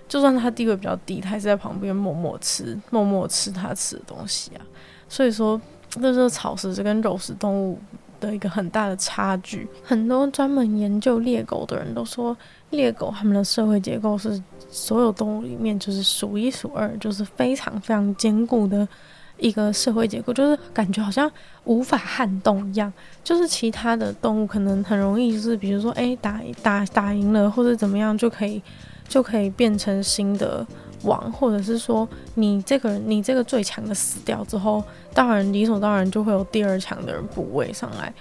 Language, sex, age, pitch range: Chinese, female, 20-39, 200-235 Hz